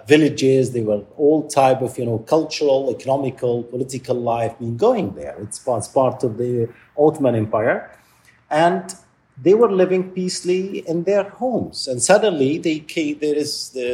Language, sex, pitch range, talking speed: English, male, 110-150 Hz, 145 wpm